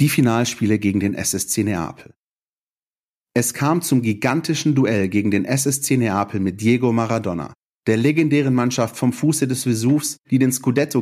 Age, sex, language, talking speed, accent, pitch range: 40-59, male, German, 150 wpm, German, 110-135 Hz